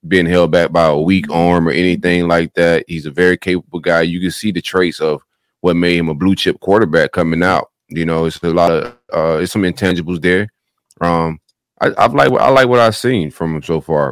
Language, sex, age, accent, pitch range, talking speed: English, male, 30-49, American, 80-90 Hz, 240 wpm